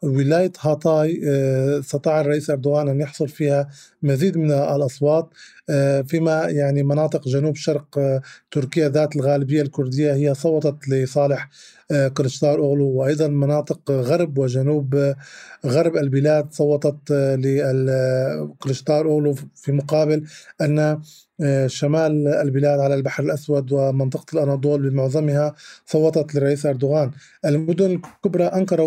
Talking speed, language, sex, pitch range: 105 wpm, Arabic, male, 140-155 Hz